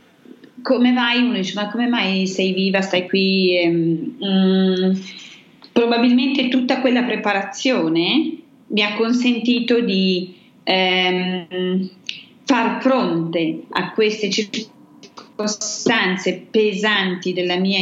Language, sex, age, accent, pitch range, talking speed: Italian, female, 30-49, native, 185-235 Hz, 100 wpm